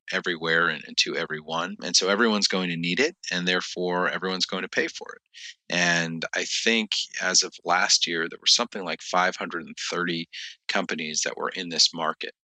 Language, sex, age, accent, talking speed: English, male, 30-49, American, 185 wpm